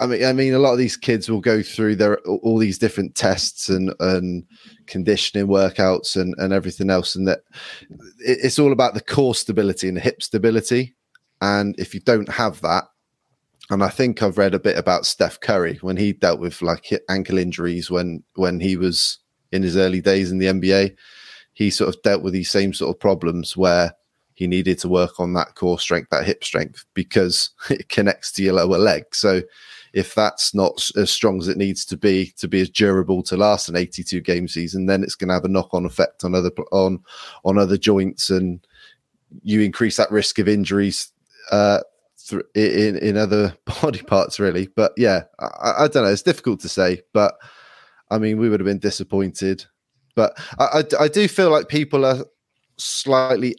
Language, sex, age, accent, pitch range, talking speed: English, male, 20-39, British, 95-110 Hz, 200 wpm